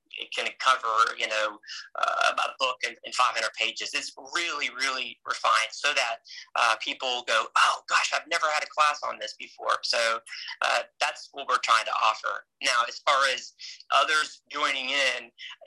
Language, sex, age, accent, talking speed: English, male, 30-49, American, 170 wpm